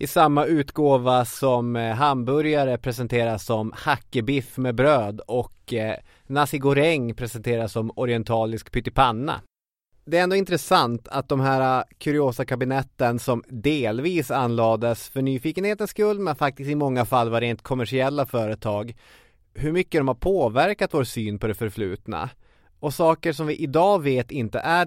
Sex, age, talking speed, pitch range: male, 30-49, 140 wpm, 115-150 Hz